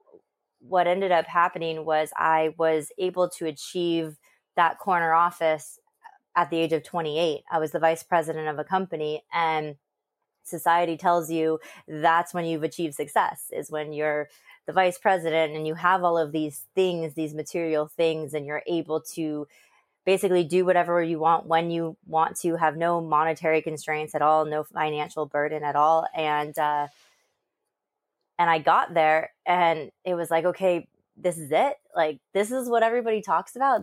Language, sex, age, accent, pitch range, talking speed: English, female, 20-39, American, 155-180 Hz, 170 wpm